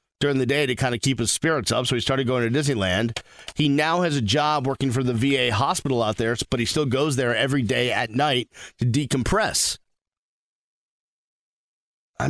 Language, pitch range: English, 115-170 Hz